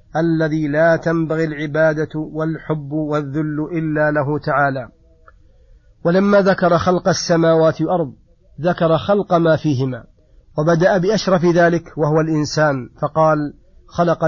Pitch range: 150-170 Hz